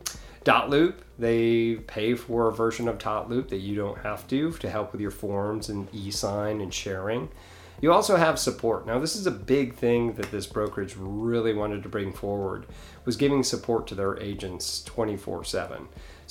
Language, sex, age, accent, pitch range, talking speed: English, male, 30-49, American, 100-120 Hz, 175 wpm